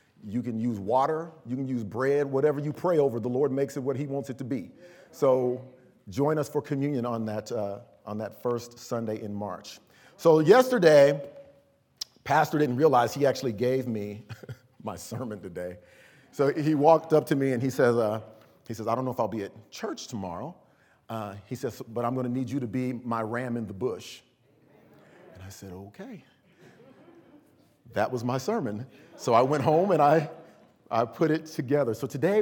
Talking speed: 195 wpm